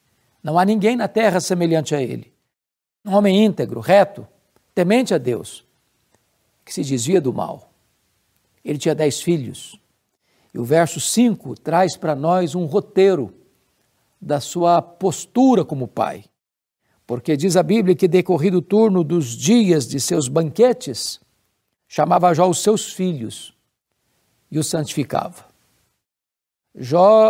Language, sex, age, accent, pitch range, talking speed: Portuguese, male, 60-79, Brazilian, 155-205 Hz, 130 wpm